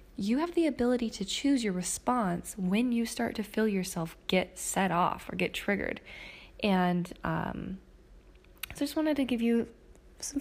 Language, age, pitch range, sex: English, 20-39, 190-255 Hz, female